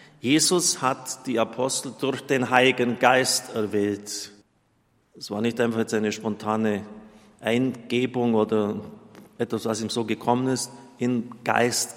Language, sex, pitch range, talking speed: German, male, 115-140 Hz, 130 wpm